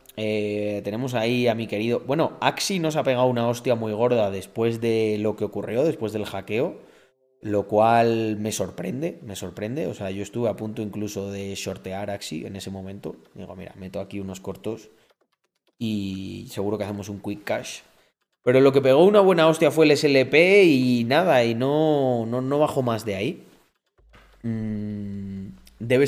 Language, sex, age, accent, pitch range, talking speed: Spanish, male, 30-49, Spanish, 100-125 Hz, 180 wpm